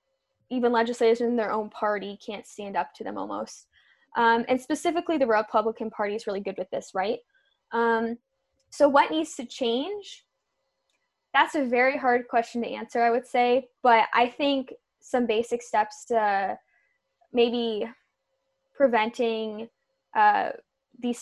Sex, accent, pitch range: female, American, 220-270 Hz